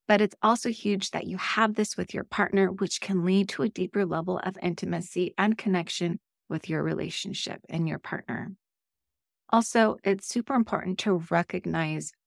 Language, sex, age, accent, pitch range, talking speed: English, female, 30-49, American, 175-215 Hz, 165 wpm